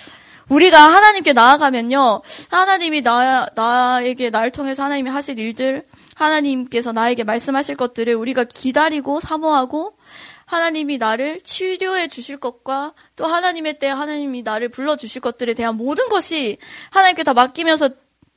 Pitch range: 240-310 Hz